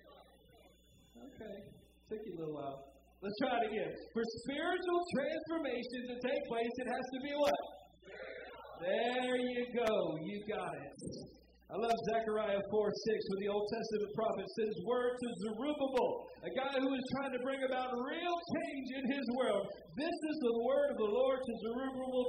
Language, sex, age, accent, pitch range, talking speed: English, male, 50-69, American, 175-250 Hz, 170 wpm